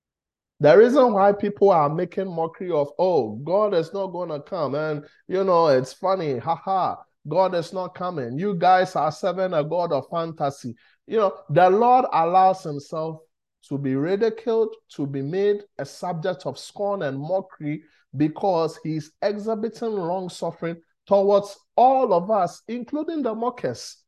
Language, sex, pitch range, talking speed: English, male, 145-195 Hz, 155 wpm